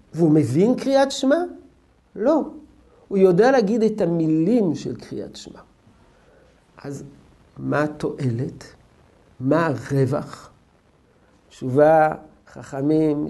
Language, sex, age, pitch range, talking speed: Hebrew, male, 50-69, 150-195 Hz, 90 wpm